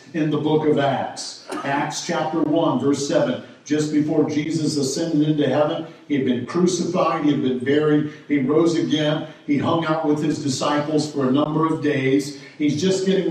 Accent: American